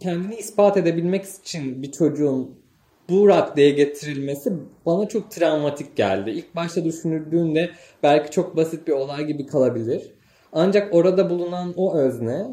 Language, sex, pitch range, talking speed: Turkish, male, 135-175 Hz, 135 wpm